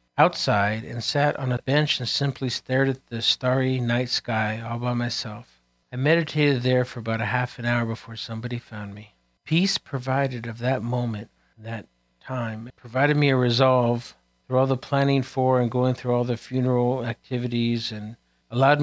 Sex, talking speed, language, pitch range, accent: male, 175 wpm, English, 115-135 Hz, American